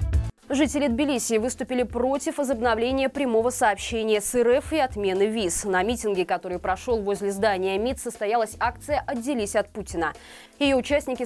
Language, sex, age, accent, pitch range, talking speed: Russian, female, 20-39, native, 200-255 Hz, 140 wpm